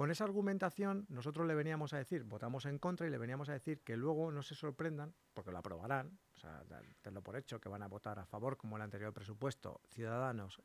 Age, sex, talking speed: 50-69, male, 225 wpm